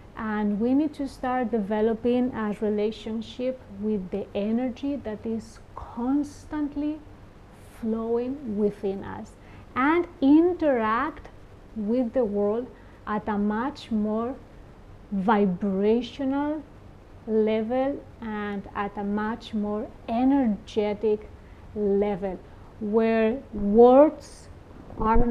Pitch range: 210-255 Hz